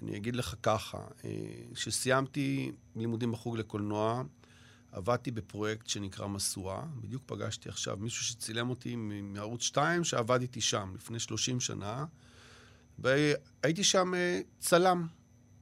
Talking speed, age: 110 wpm, 50-69